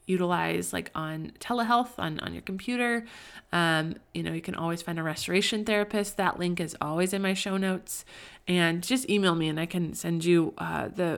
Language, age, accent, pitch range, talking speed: English, 20-39, American, 170-210 Hz, 200 wpm